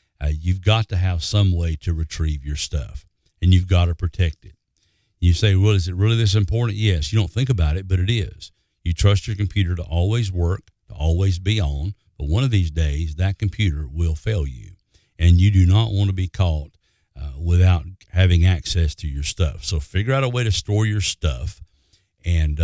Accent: American